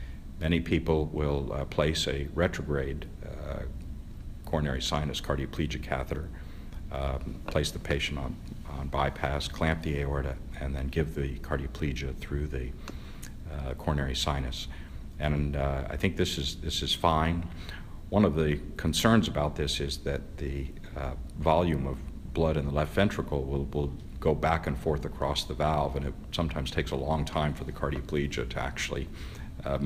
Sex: male